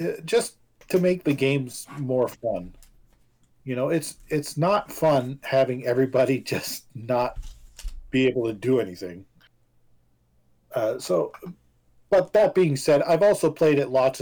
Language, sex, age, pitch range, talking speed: English, male, 40-59, 115-145 Hz, 140 wpm